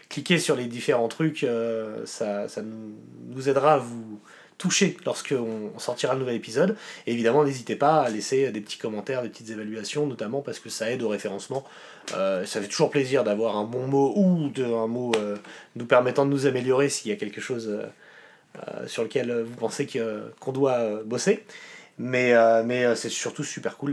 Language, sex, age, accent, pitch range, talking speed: French, male, 30-49, French, 115-150 Hz, 205 wpm